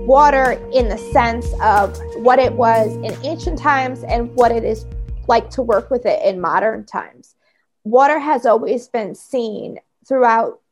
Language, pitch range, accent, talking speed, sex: English, 215-265 Hz, American, 160 wpm, female